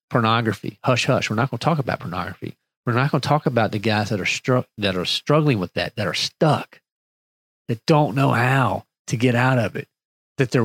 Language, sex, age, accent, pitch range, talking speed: English, male, 40-59, American, 110-135 Hz, 220 wpm